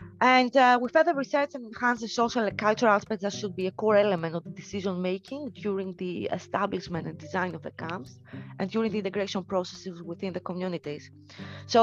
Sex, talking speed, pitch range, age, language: female, 200 wpm, 170-215 Hz, 30-49, Greek